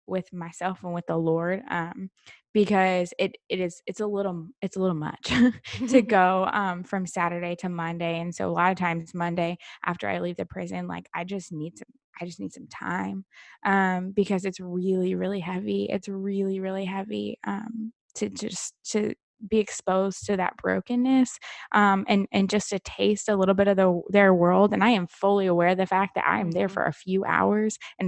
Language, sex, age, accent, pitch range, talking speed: English, female, 20-39, American, 175-215 Hz, 205 wpm